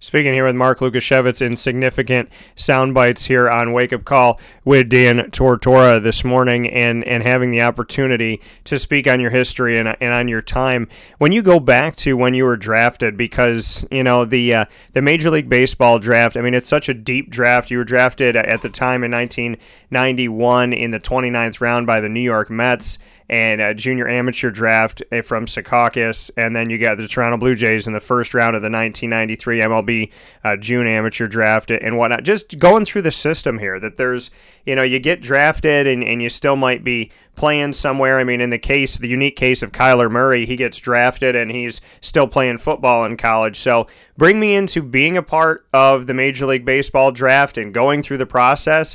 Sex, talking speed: male, 205 wpm